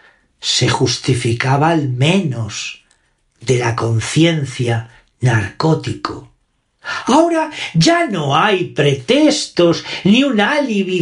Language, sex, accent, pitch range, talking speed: Spanish, male, Spanish, 135-225 Hz, 85 wpm